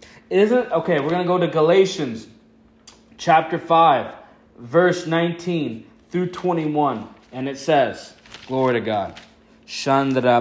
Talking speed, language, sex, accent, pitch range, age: 125 wpm, English, male, American, 135-180 Hz, 20-39